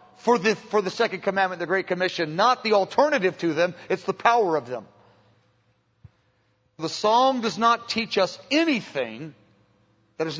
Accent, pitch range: American, 175-255 Hz